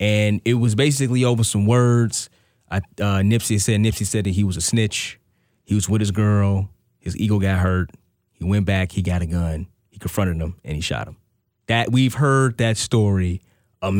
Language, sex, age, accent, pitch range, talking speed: English, male, 30-49, American, 100-130 Hz, 200 wpm